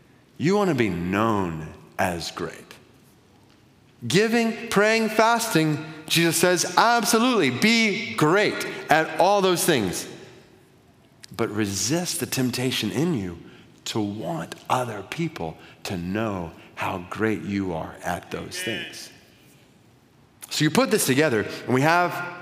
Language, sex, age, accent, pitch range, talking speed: English, male, 40-59, American, 115-185 Hz, 125 wpm